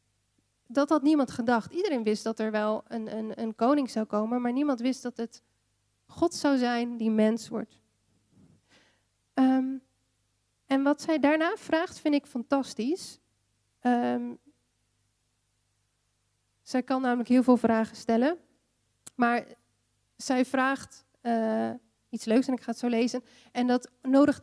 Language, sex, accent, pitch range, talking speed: Dutch, female, Dutch, 210-265 Hz, 140 wpm